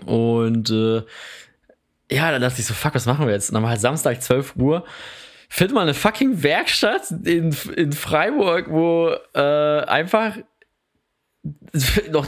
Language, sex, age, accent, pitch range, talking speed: German, male, 20-39, German, 115-145 Hz, 150 wpm